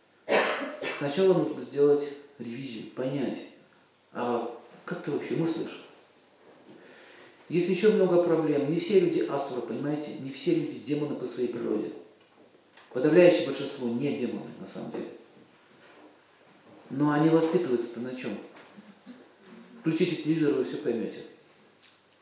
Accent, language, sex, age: native, Russian, male, 40-59